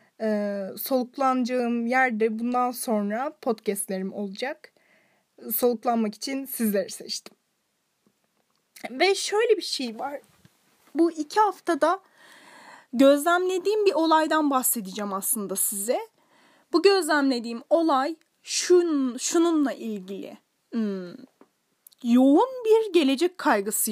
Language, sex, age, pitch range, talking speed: Turkish, female, 10-29, 215-320 Hz, 90 wpm